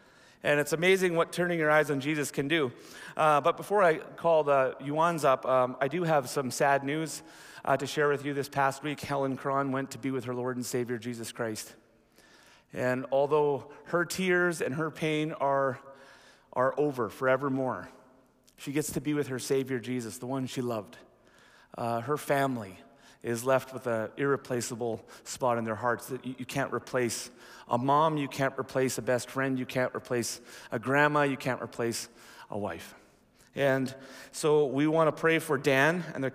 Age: 30-49